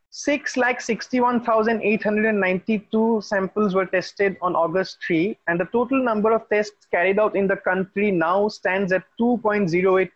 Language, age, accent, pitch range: English, 30-49, Indian, 185-225 Hz